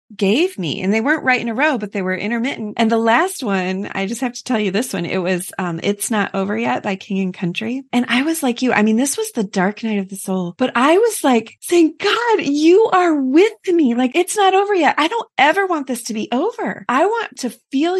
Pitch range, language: 195-275 Hz, English